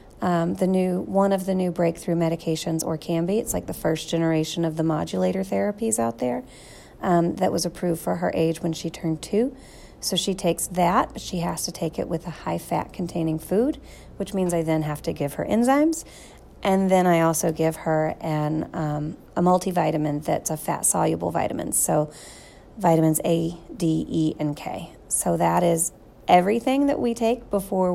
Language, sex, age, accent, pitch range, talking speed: English, female, 30-49, American, 155-180 Hz, 190 wpm